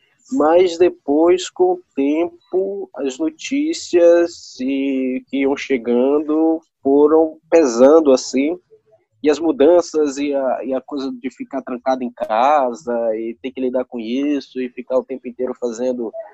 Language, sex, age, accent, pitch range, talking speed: Portuguese, male, 20-39, Brazilian, 130-185 Hz, 140 wpm